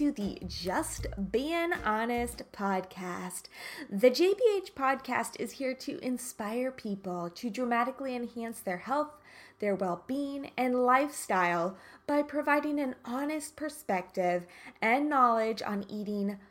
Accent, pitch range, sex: American, 205-295 Hz, female